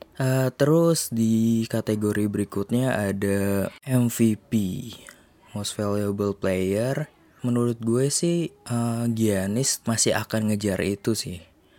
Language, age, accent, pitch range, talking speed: Indonesian, 20-39, native, 100-120 Hz, 100 wpm